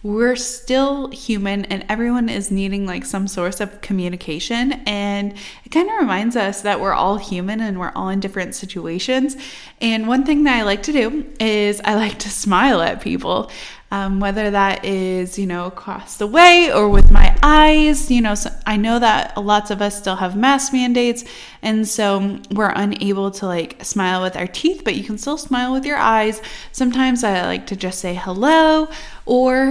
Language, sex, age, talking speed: English, female, 20-39, 190 wpm